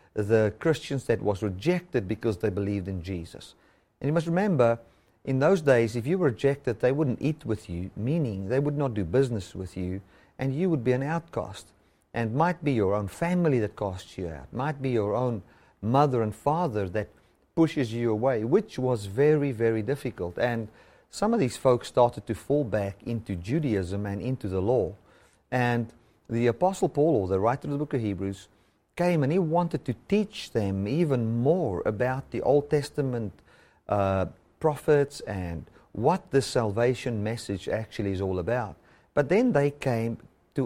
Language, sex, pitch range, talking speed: English, male, 105-145 Hz, 180 wpm